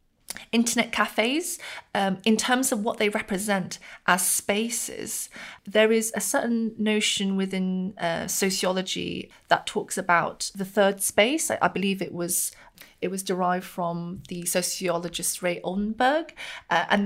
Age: 30-49